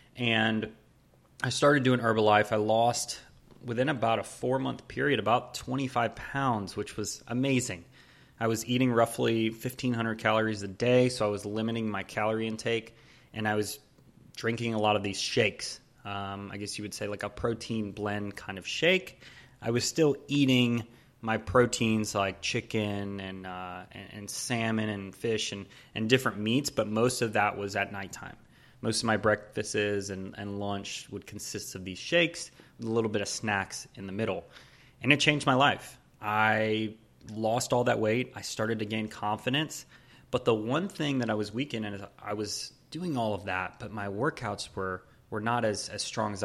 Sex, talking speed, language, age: male, 185 wpm, English, 30-49